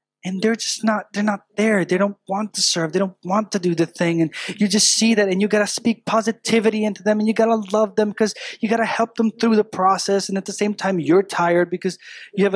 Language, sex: English, male